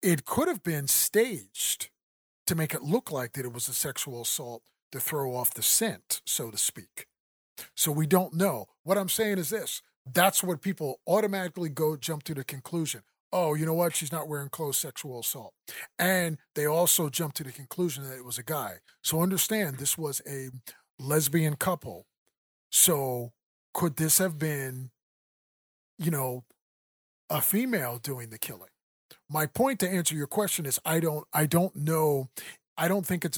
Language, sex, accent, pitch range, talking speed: English, male, American, 130-175 Hz, 180 wpm